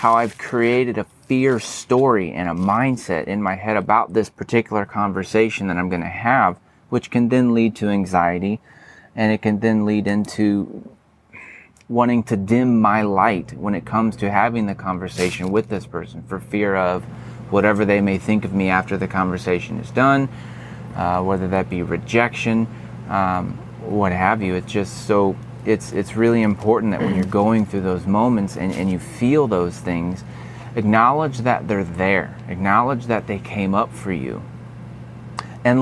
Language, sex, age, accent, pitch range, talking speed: English, male, 30-49, American, 95-120 Hz, 175 wpm